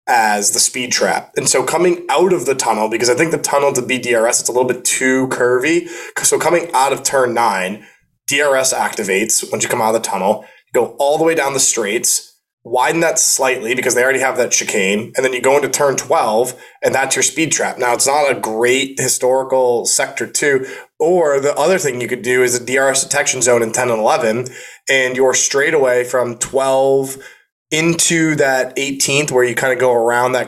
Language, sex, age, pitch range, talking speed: English, male, 20-39, 125-185 Hz, 215 wpm